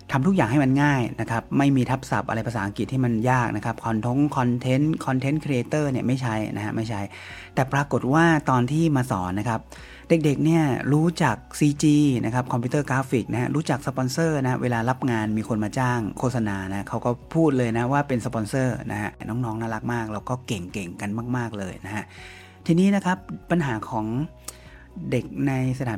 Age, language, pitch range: 30-49, Thai, 110-140 Hz